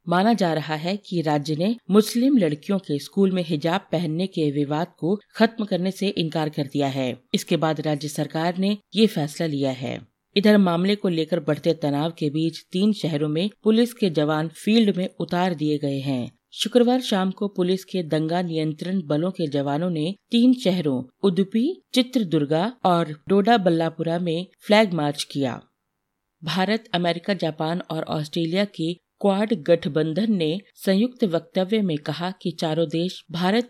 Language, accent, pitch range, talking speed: Hindi, native, 155-200 Hz, 160 wpm